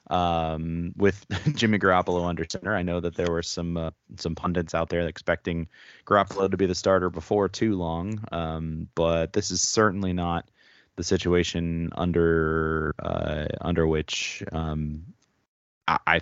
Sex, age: male, 30-49